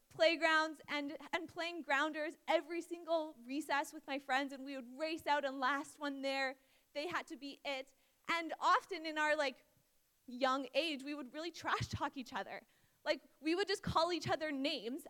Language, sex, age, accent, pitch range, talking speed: English, female, 20-39, American, 270-340 Hz, 185 wpm